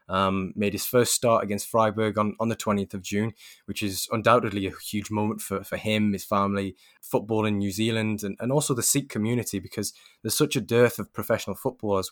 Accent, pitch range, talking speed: British, 100-115 Hz, 210 wpm